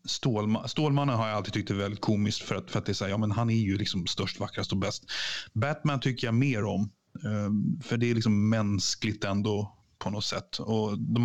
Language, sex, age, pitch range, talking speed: Swedish, male, 30-49, 105-120 Hz, 220 wpm